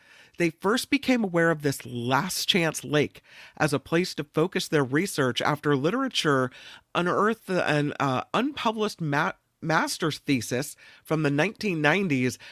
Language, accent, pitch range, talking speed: English, American, 135-185 Hz, 130 wpm